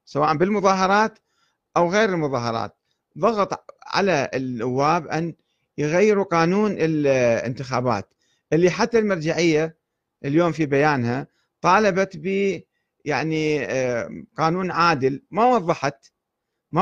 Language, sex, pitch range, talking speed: Arabic, male, 125-180 Hz, 95 wpm